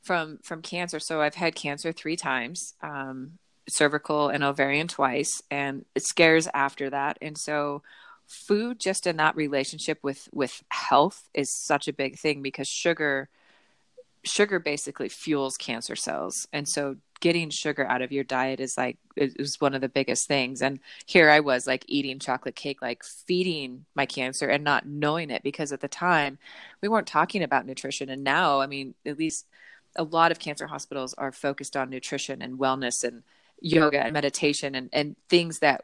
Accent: American